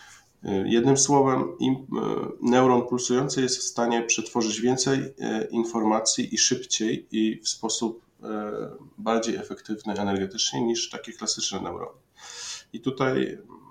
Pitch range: 95-115 Hz